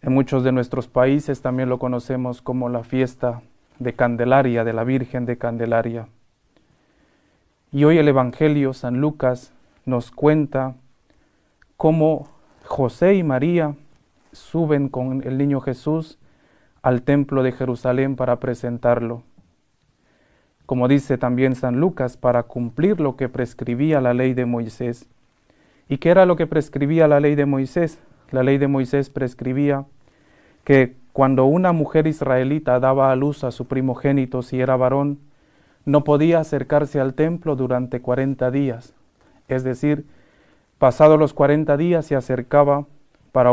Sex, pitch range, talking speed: male, 125-145 Hz, 140 wpm